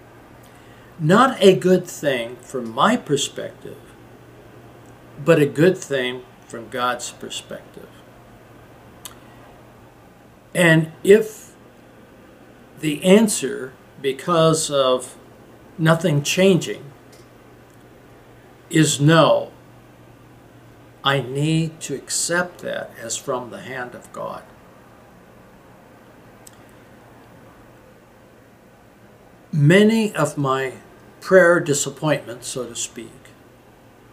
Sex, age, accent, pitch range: male, 60-79, American, 125-175 Hz